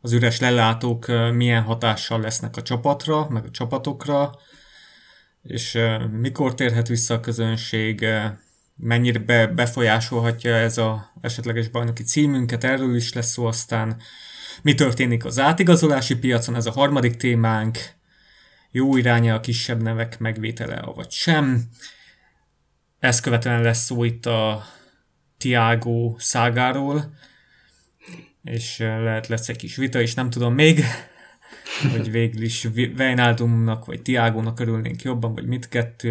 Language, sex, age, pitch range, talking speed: English, male, 20-39, 115-125 Hz, 125 wpm